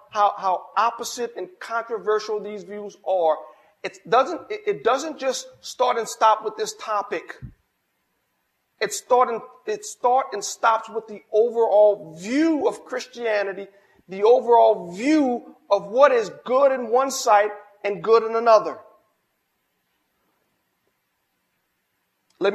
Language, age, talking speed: English, 40-59, 130 wpm